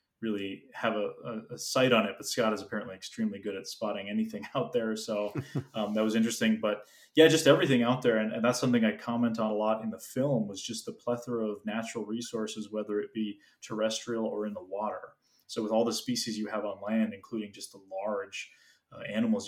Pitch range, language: 105-120 Hz, English